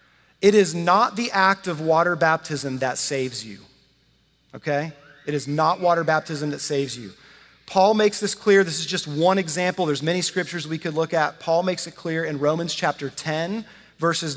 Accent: American